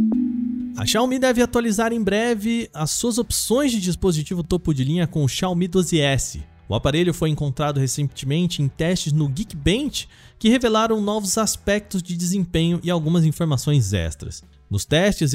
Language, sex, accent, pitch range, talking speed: Portuguese, male, Brazilian, 135-205 Hz, 155 wpm